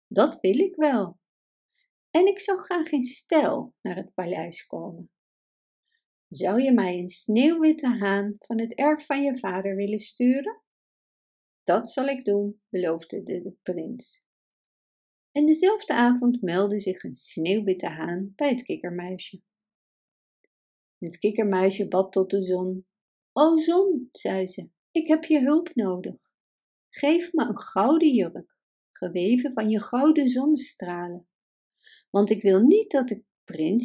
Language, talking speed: Dutch, 140 wpm